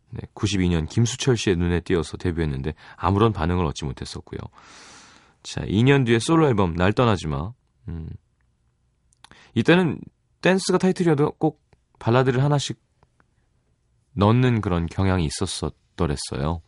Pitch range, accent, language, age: 90-135 Hz, native, Korean, 30-49